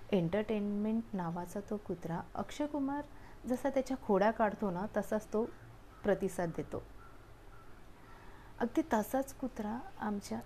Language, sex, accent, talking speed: Marathi, female, native, 110 wpm